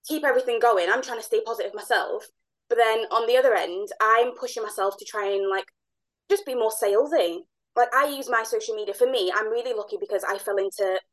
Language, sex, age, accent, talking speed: English, female, 20-39, British, 220 wpm